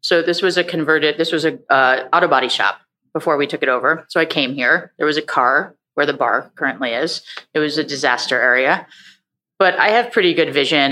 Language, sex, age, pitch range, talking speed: English, female, 30-49, 145-170 Hz, 220 wpm